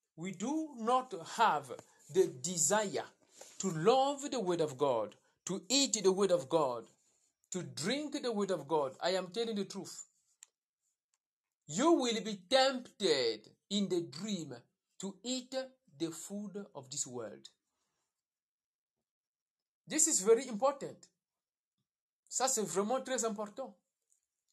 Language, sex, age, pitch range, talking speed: English, male, 60-79, 175-250 Hz, 125 wpm